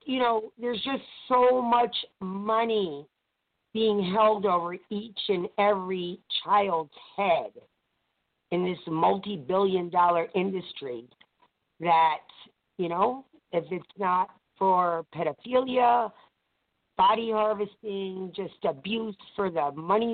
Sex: female